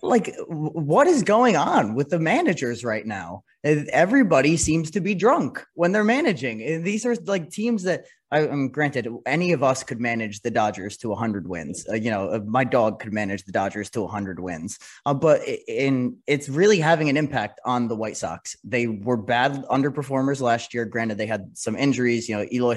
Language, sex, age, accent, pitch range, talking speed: English, male, 20-39, American, 115-155 Hz, 200 wpm